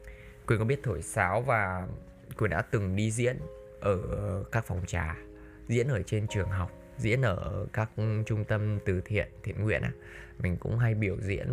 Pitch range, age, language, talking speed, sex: 95-115 Hz, 20-39, Vietnamese, 180 wpm, male